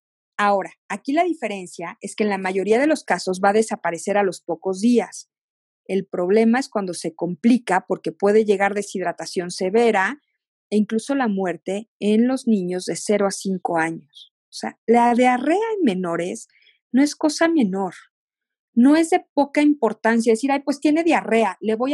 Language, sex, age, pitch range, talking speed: Spanish, female, 40-59, 200-255 Hz, 175 wpm